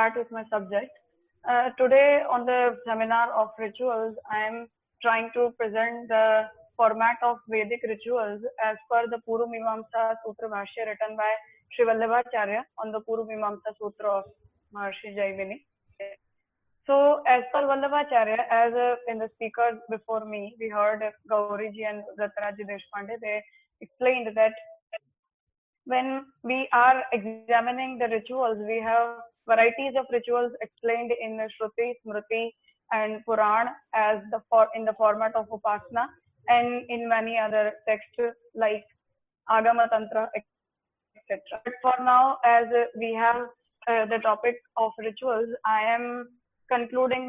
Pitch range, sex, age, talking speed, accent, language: 220-245 Hz, female, 20-39, 130 wpm, Indian, English